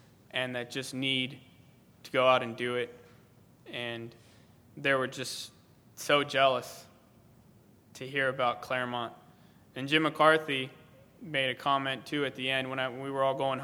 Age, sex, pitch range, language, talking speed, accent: 20-39, male, 130-150 Hz, English, 160 wpm, American